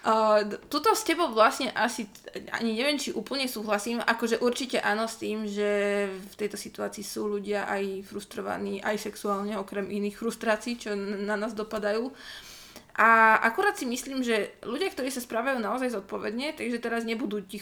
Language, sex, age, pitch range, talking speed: Slovak, female, 20-39, 210-230 Hz, 165 wpm